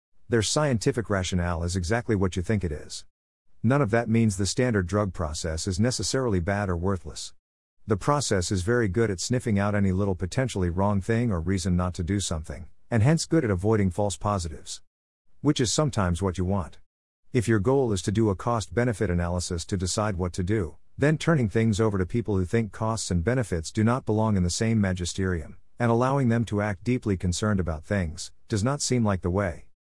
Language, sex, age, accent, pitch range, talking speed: English, male, 50-69, American, 90-115 Hz, 205 wpm